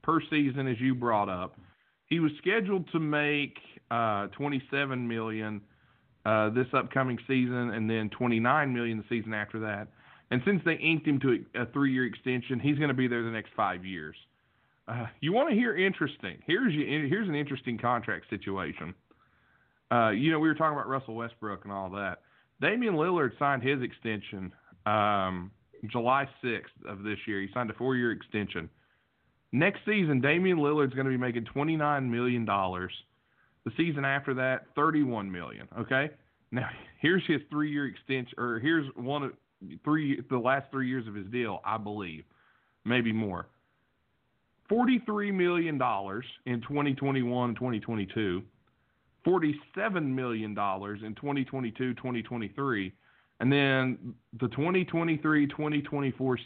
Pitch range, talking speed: 110-145 Hz, 145 wpm